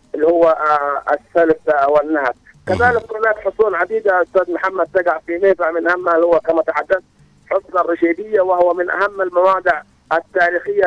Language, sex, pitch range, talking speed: Arabic, male, 165-195 Hz, 150 wpm